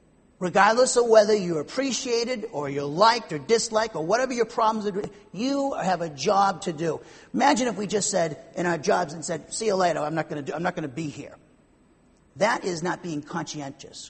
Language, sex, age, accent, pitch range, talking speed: English, male, 40-59, American, 170-230 Hz, 190 wpm